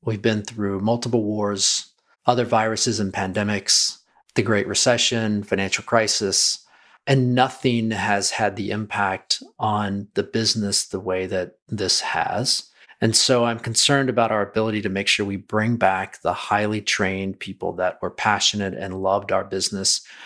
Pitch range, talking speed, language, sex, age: 100-115 Hz, 155 wpm, English, male, 40-59